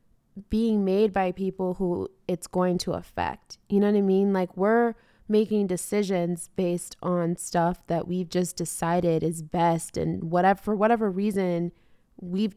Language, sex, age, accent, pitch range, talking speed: English, female, 20-39, American, 175-200 Hz, 155 wpm